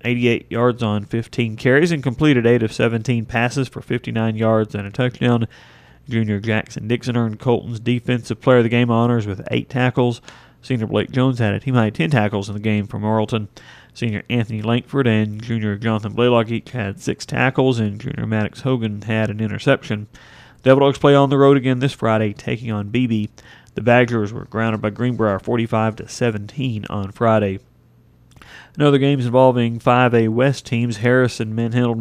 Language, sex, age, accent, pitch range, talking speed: English, male, 40-59, American, 110-125 Hz, 170 wpm